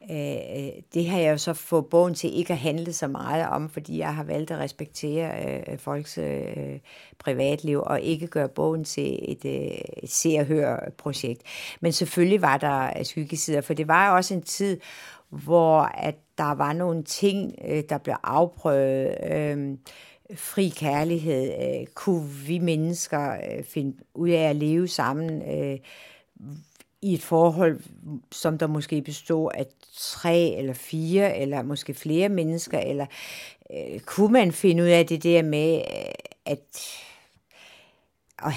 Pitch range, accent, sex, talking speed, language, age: 145-170 Hz, native, female, 145 wpm, Danish, 60-79